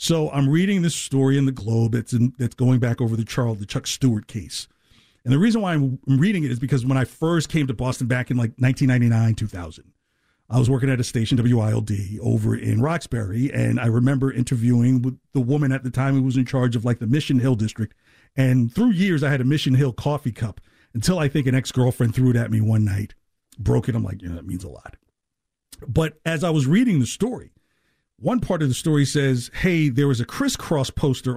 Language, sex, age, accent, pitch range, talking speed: English, male, 50-69, American, 115-145 Hz, 230 wpm